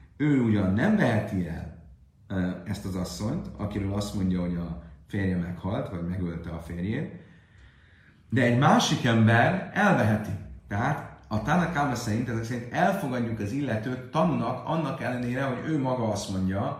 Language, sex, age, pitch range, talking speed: Hungarian, male, 30-49, 95-130 Hz, 150 wpm